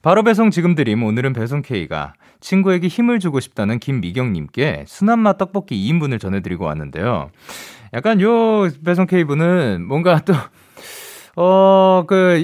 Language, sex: Korean, male